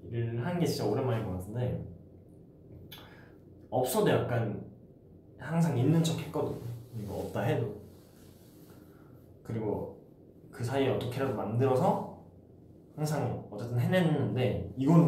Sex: male